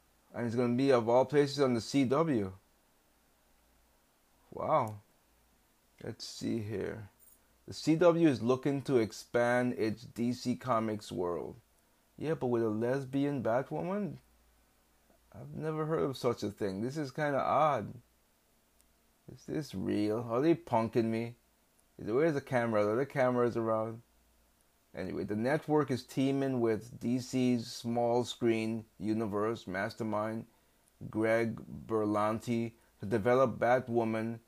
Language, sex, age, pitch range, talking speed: English, male, 30-49, 110-125 Hz, 125 wpm